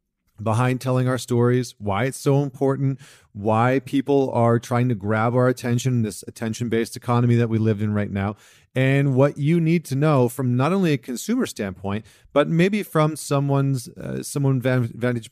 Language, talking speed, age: English, 170 wpm, 40-59